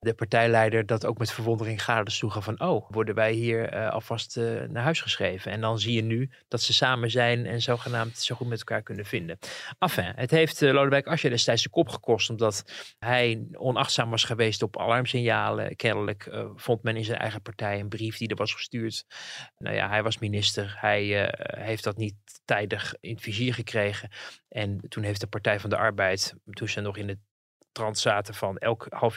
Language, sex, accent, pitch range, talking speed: Dutch, male, Dutch, 105-125 Hz, 205 wpm